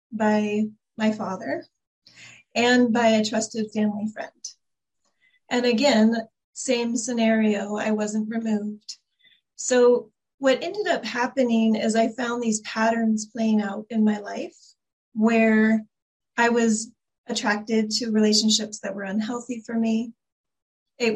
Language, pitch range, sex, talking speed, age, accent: English, 215-240 Hz, female, 120 wpm, 30-49, American